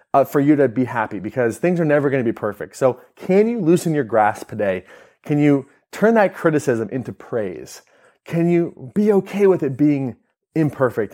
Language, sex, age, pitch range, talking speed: English, male, 30-49, 115-150 Hz, 190 wpm